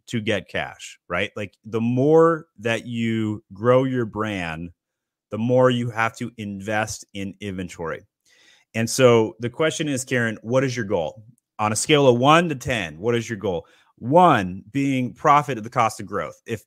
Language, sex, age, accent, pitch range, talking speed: English, male, 30-49, American, 105-145 Hz, 180 wpm